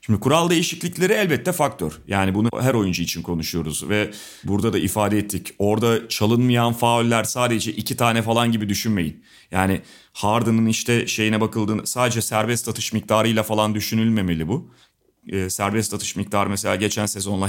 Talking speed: 150 wpm